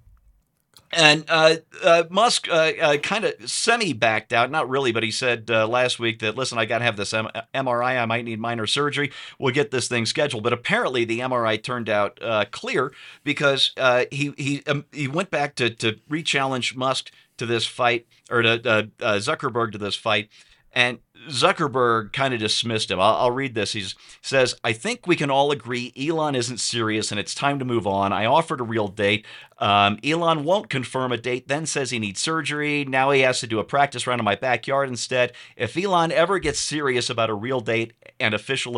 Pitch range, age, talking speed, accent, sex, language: 110-145 Hz, 50-69, 210 wpm, American, male, English